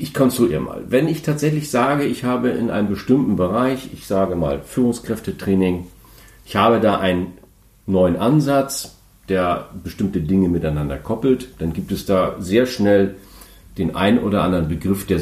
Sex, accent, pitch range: male, German, 90-120 Hz